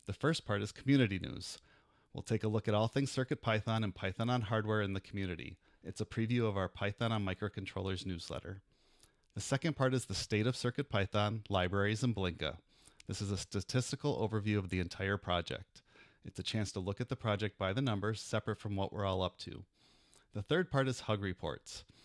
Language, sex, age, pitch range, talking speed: English, male, 30-49, 95-120 Hz, 200 wpm